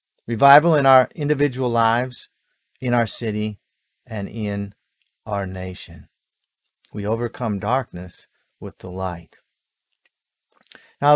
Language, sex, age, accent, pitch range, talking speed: English, male, 50-69, American, 110-150 Hz, 100 wpm